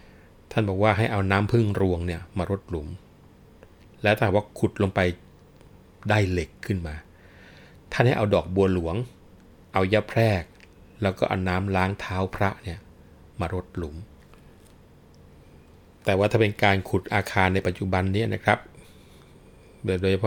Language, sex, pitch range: Thai, male, 85-100 Hz